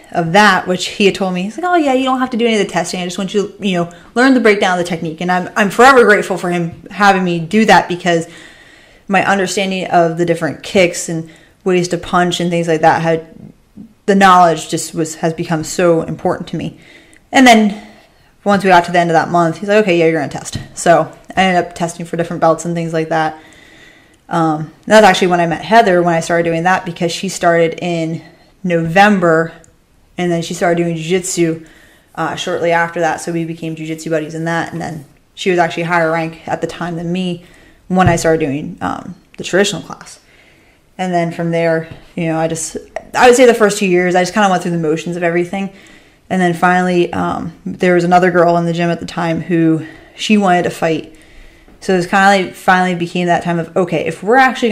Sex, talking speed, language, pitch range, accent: female, 235 wpm, English, 165-190 Hz, American